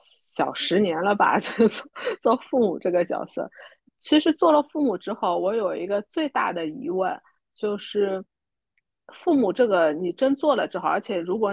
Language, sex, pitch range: Chinese, female, 200-280 Hz